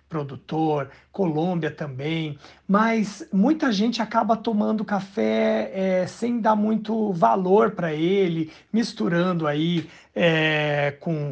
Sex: male